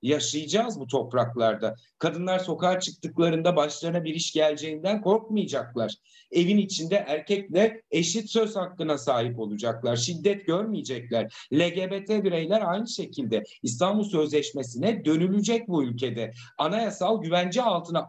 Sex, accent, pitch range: male, native, 145-190 Hz